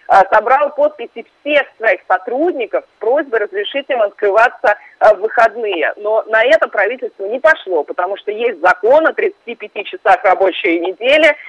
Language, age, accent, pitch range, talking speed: Russian, 30-49, native, 205-330 Hz, 140 wpm